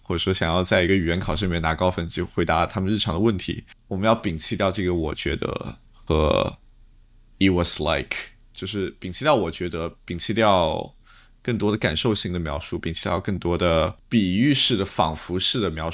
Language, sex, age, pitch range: Chinese, male, 20-39, 85-105 Hz